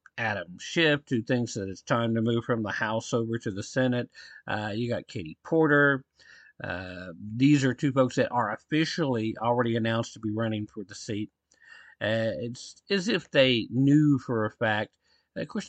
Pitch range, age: 110-140 Hz, 50-69